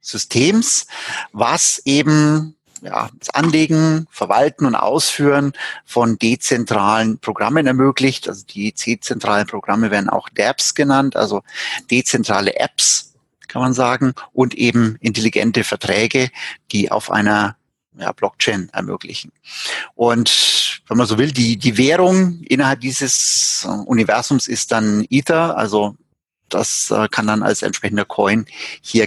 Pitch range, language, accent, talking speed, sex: 110-140 Hz, German, German, 120 wpm, male